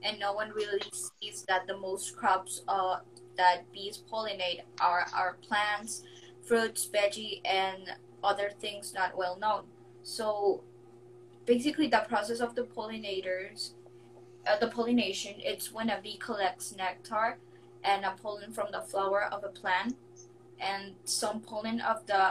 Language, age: English, 20-39